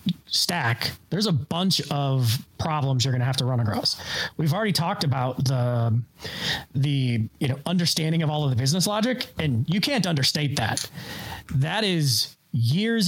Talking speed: 165 wpm